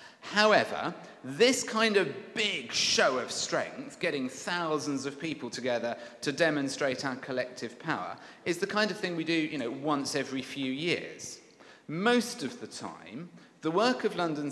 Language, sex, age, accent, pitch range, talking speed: English, male, 40-59, British, 135-175 Hz, 160 wpm